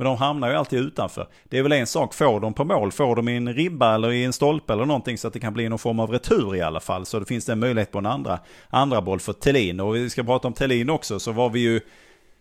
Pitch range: 100-125 Hz